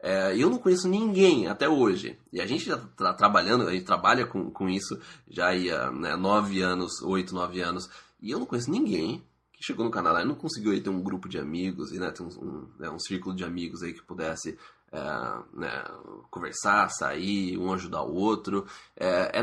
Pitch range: 90-125 Hz